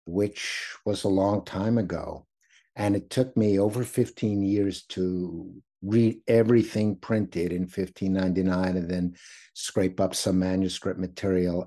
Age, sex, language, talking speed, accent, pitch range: 50-69, male, English, 135 wpm, American, 90-110 Hz